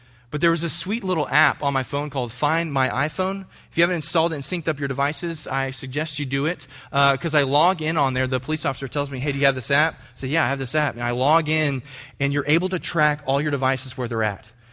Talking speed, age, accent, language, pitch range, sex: 280 wpm, 20-39, American, English, 135-185 Hz, male